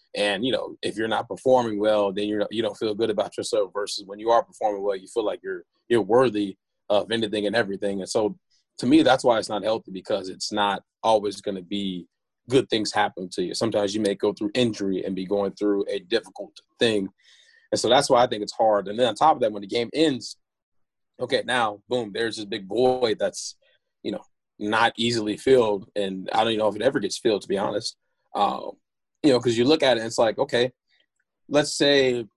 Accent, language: American, English